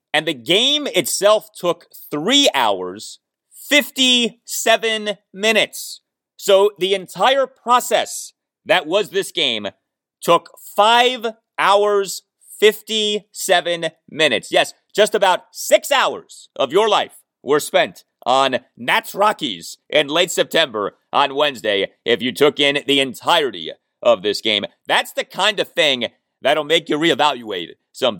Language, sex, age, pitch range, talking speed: English, male, 30-49, 155-235 Hz, 125 wpm